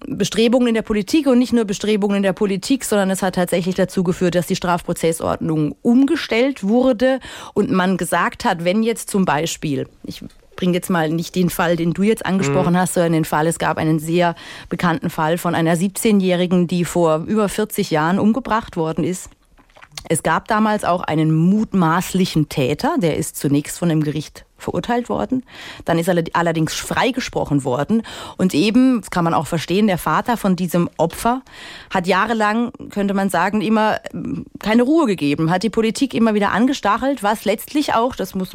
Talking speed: 180 wpm